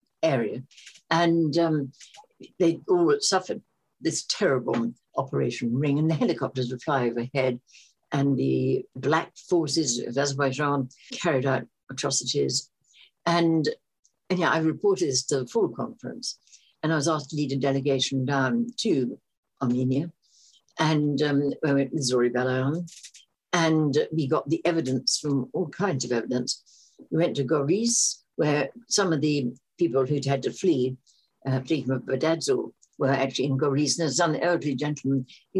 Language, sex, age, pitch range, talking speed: English, female, 60-79, 135-165 Hz, 150 wpm